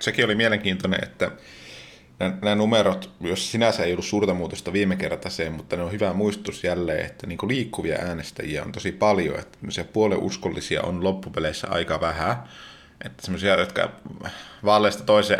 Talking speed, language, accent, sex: 140 wpm, Finnish, native, male